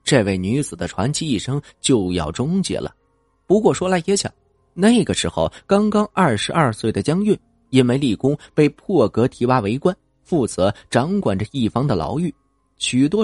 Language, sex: Chinese, male